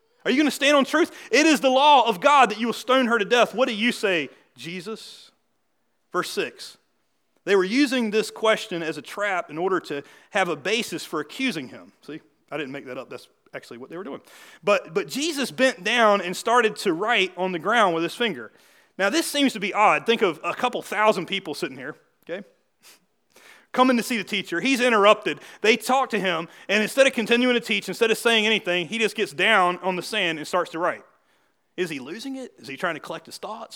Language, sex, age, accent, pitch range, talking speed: English, male, 30-49, American, 185-245 Hz, 230 wpm